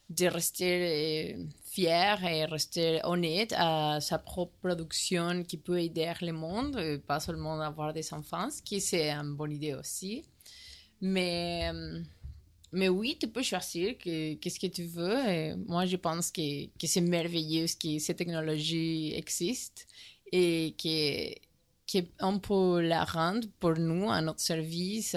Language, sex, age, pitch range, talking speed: French, female, 20-39, 155-180 Hz, 155 wpm